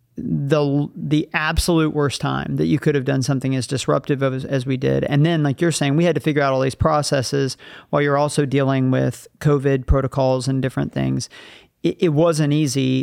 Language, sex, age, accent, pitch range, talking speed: English, male, 40-59, American, 130-155 Hz, 205 wpm